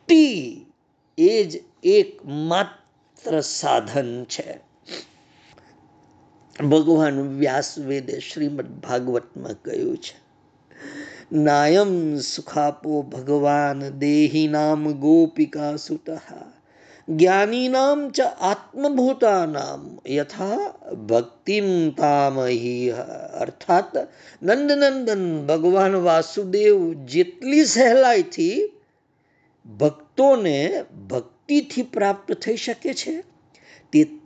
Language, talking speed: Gujarati, 65 wpm